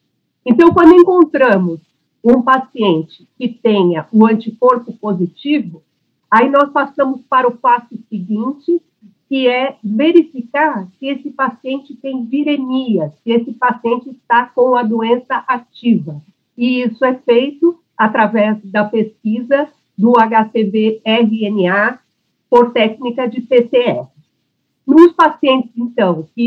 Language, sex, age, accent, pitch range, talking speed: Portuguese, female, 50-69, Brazilian, 215-270 Hz, 120 wpm